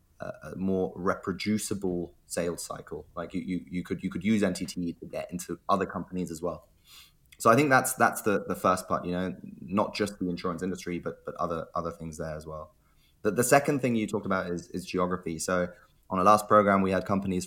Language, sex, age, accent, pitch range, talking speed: English, male, 20-39, British, 85-100 Hz, 215 wpm